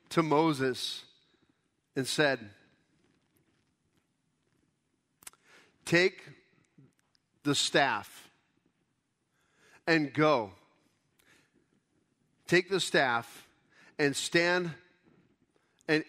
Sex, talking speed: male, 55 wpm